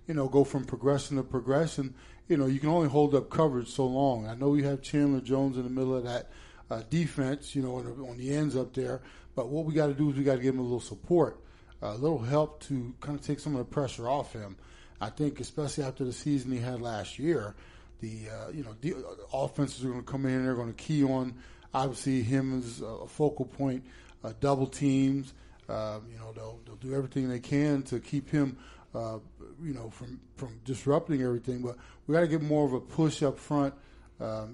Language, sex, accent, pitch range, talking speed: English, male, American, 120-140 Hz, 235 wpm